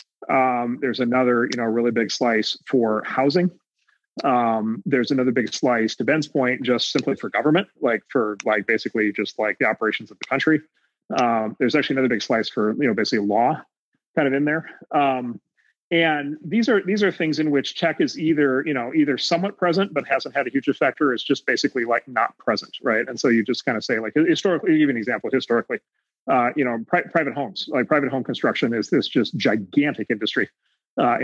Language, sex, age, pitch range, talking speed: English, male, 30-49, 115-155 Hz, 205 wpm